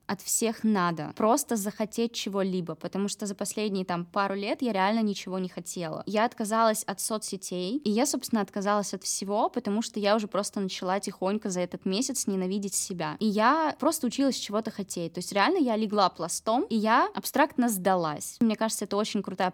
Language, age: Russian, 20-39